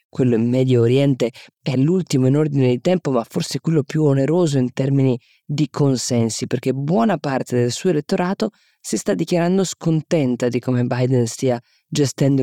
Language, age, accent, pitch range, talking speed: Italian, 20-39, native, 125-160 Hz, 165 wpm